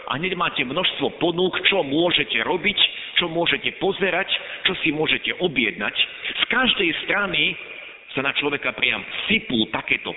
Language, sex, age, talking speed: Slovak, male, 50-69, 140 wpm